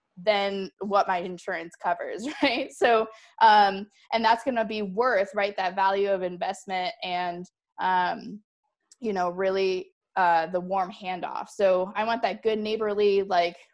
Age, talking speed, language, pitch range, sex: 20-39, 155 wpm, English, 185-220 Hz, female